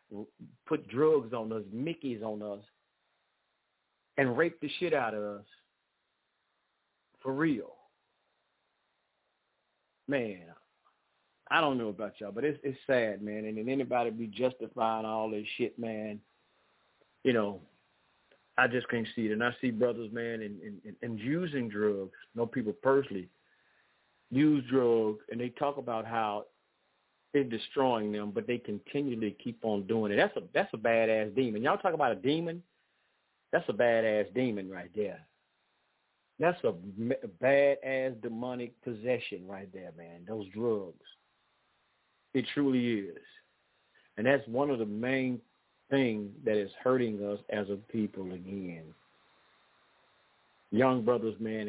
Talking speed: 140 wpm